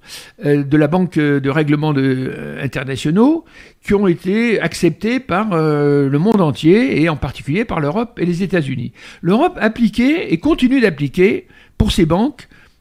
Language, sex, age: French, male, 60-79